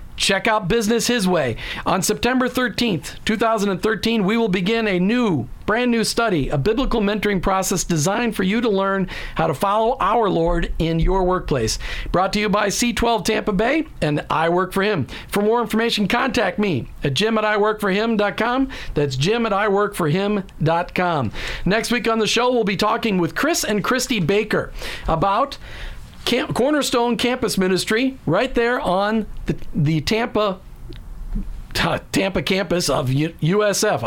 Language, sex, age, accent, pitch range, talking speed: English, male, 50-69, American, 180-230 Hz, 155 wpm